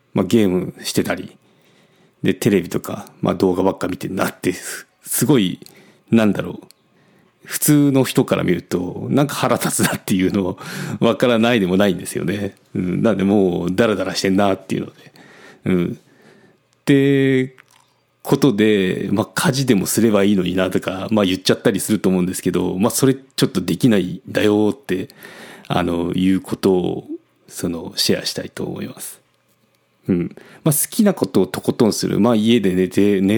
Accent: native